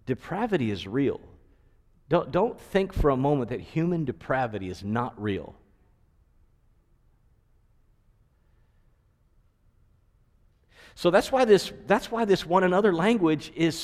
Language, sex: English, male